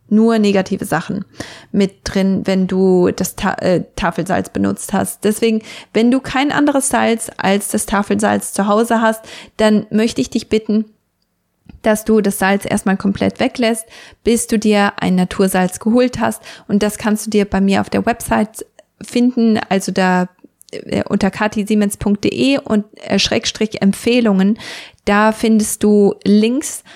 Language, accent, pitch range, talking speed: German, German, 195-235 Hz, 150 wpm